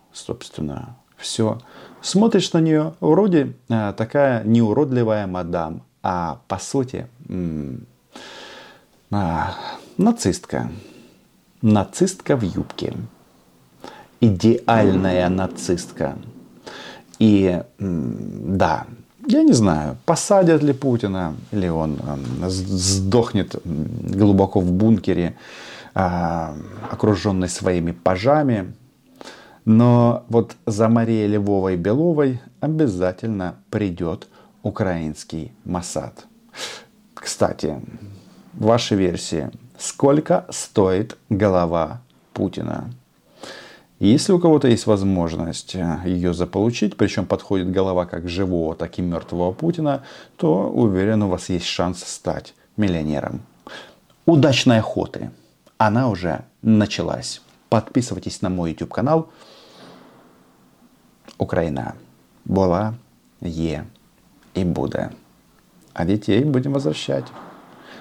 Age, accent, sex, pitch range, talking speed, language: 40-59, native, male, 90-115 Hz, 85 wpm, Russian